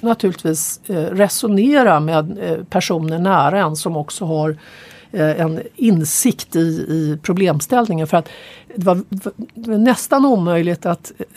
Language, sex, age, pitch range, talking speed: English, female, 50-69, 160-205 Hz, 105 wpm